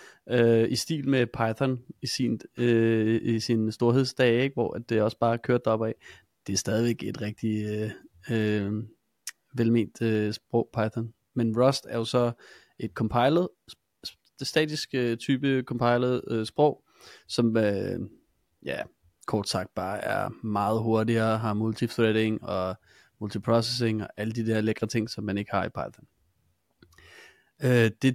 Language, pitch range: Danish, 110-130 Hz